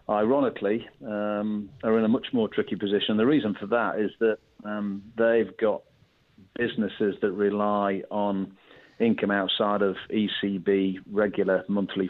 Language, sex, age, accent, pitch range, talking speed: English, male, 40-59, British, 95-105 Hz, 140 wpm